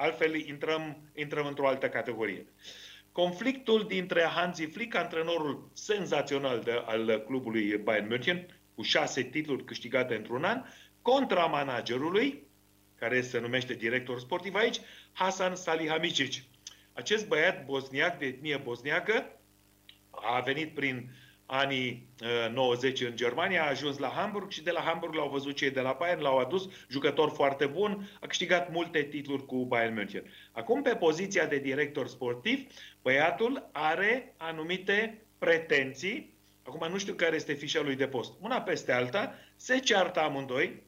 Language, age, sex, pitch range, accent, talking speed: Romanian, 40-59, male, 125-175 Hz, native, 140 wpm